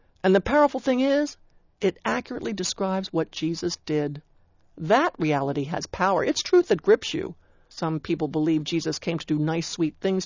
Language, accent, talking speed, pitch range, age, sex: English, American, 175 wpm, 165-230 Hz, 60-79, male